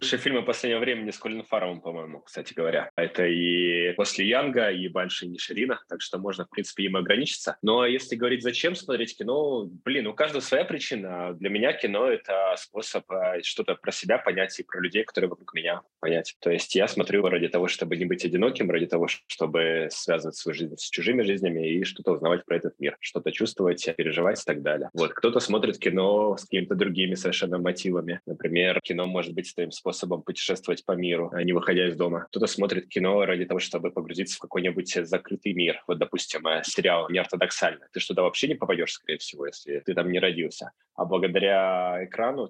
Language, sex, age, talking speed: Russian, male, 20-39, 195 wpm